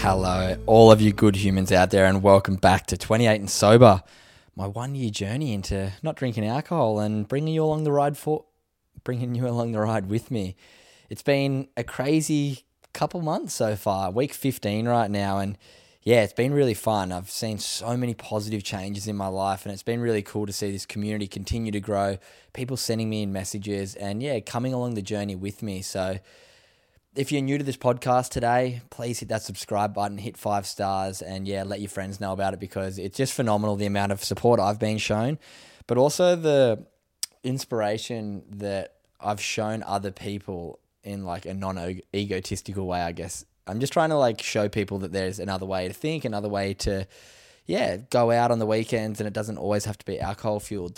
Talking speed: 200 wpm